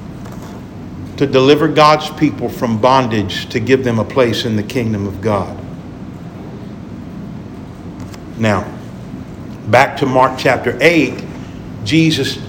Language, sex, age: English, male, 50-69